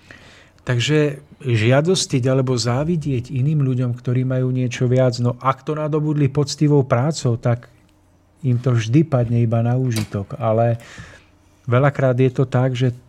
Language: Czech